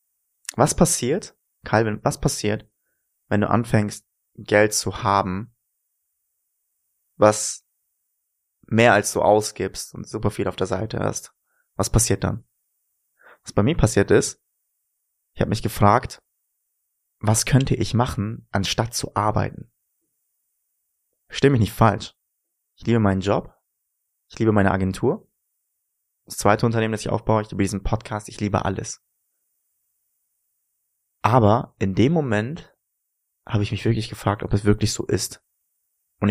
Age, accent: 20-39, German